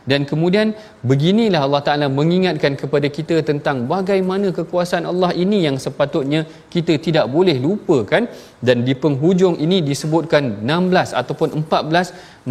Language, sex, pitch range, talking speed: Malayalam, male, 140-180 Hz, 135 wpm